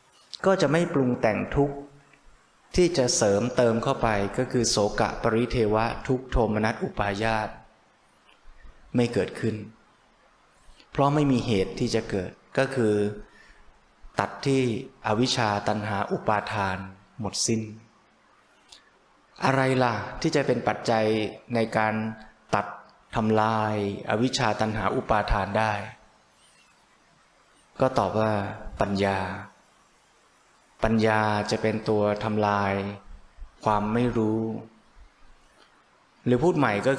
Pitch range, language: 105-130 Hz, Thai